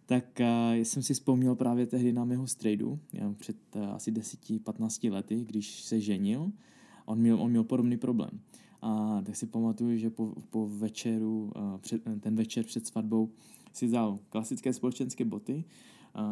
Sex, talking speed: male, 165 wpm